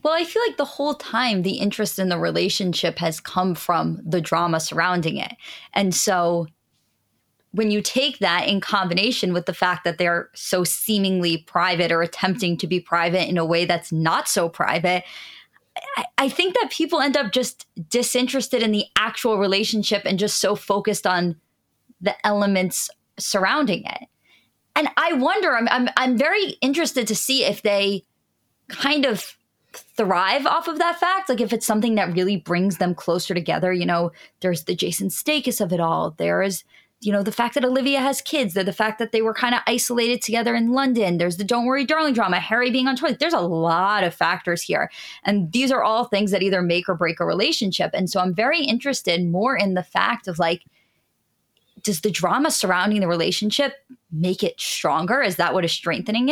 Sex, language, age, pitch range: female, English, 20-39, 180-245 Hz